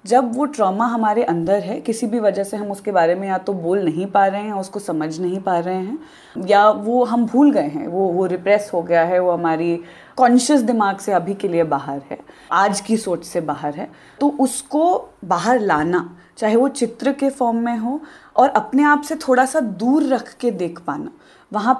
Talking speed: 215 wpm